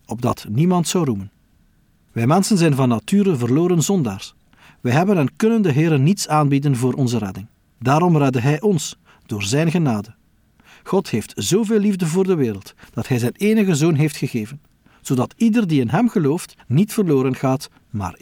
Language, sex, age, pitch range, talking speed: Dutch, male, 40-59, 115-170 Hz, 175 wpm